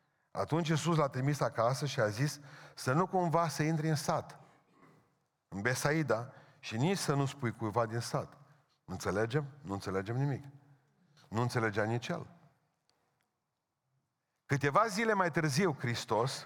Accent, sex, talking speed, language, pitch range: native, male, 140 wpm, Romanian, 115-150 Hz